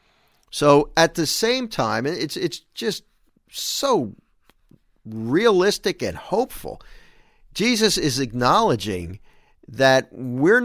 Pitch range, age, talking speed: 120-165 Hz, 50-69, 95 wpm